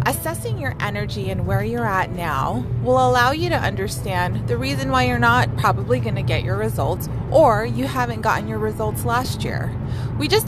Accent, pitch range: American, 115-130 Hz